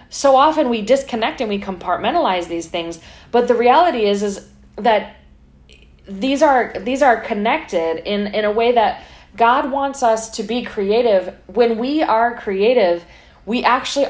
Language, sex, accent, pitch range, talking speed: English, female, American, 185-235 Hz, 160 wpm